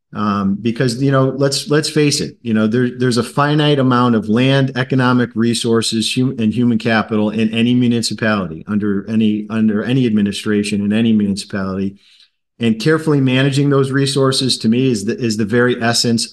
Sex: male